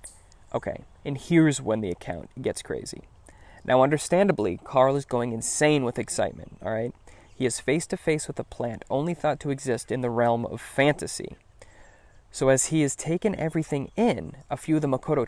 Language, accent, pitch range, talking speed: English, American, 115-145 Hz, 175 wpm